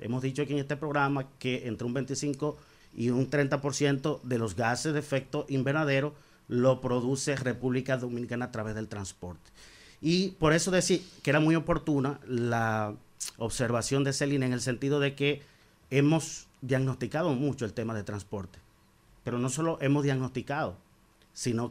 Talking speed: 160 wpm